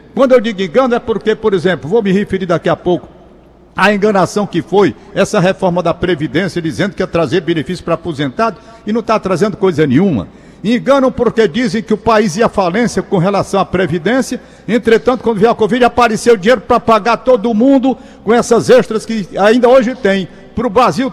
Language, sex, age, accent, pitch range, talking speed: Portuguese, male, 60-79, Brazilian, 185-230 Hz, 195 wpm